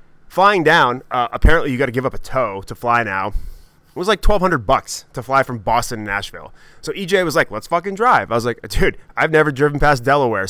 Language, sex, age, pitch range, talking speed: English, male, 20-39, 115-160 Hz, 235 wpm